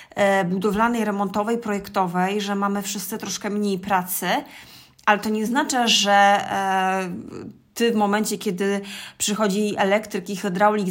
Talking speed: 120 wpm